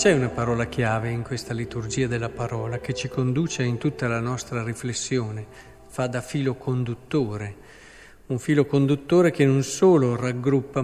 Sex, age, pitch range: male, 50-69, 120-150 Hz